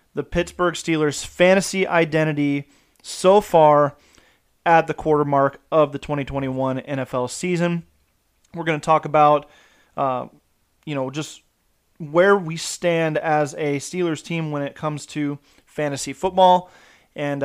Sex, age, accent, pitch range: male, 30-49, American, 145-170 Hz